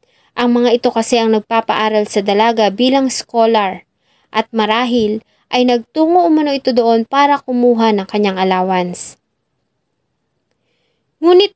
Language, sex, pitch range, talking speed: English, female, 210-250 Hz, 120 wpm